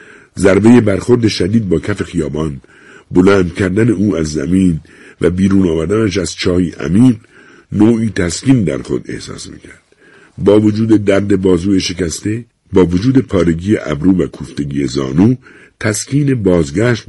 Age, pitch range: 60-79, 80-105 Hz